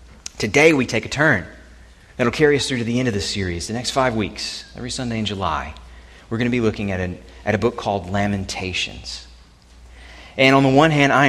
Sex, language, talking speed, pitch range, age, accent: male, English, 220 wpm, 70-110 Hz, 30-49, American